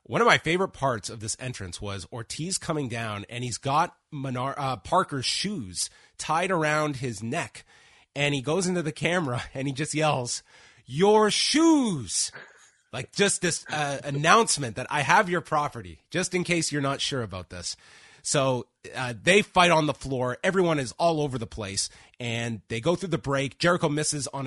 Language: English